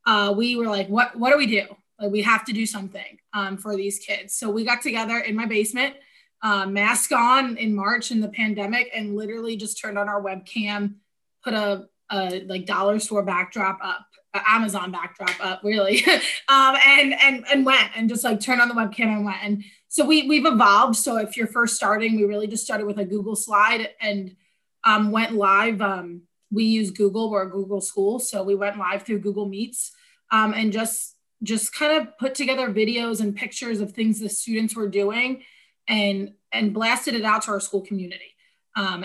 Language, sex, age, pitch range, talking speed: English, female, 20-39, 205-230 Hz, 205 wpm